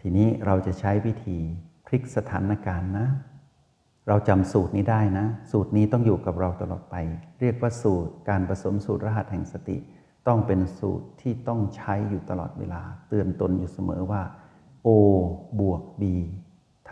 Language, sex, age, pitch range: Thai, male, 60-79, 95-120 Hz